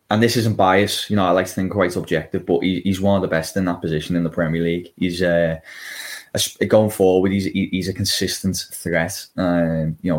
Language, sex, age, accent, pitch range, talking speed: English, male, 20-39, British, 85-95 Hz, 240 wpm